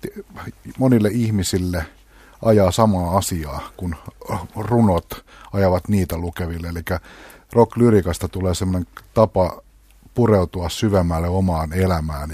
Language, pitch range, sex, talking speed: Finnish, 85-105 Hz, male, 90 wpm